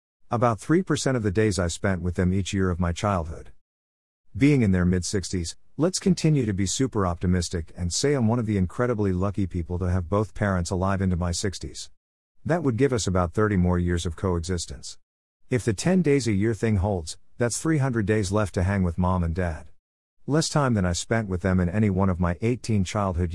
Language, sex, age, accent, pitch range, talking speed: English, male, 50-69, American, 90-110 Hz, 215 wpm